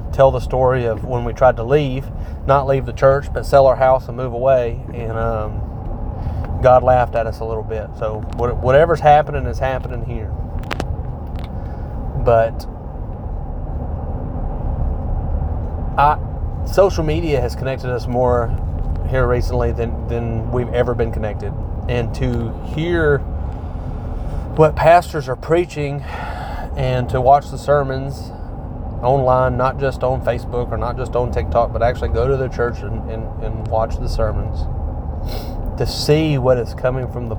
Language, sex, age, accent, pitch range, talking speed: English, male, 30-49, American, 85-125 Hz, 150 wpm